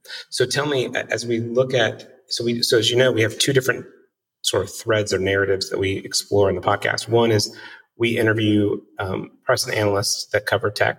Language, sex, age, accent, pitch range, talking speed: English, male, 30-49, American, 100-115 Hz, 215 wpm